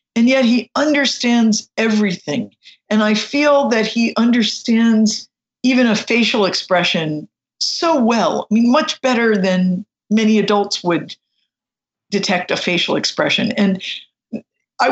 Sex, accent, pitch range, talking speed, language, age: female, American, 185-230 Hz, 125 wpm, English, 50-69